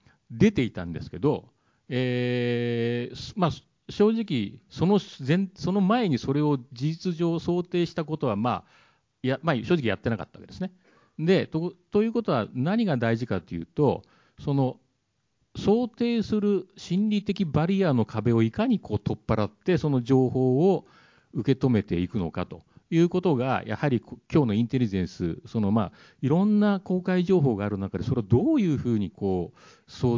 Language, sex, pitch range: Japanese, male, 110-180 Hz